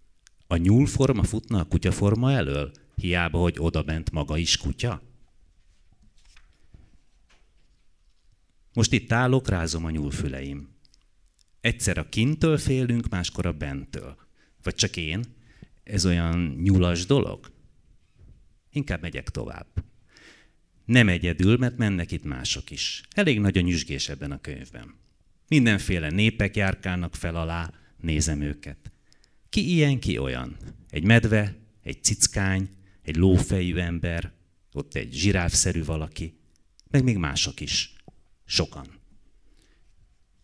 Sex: male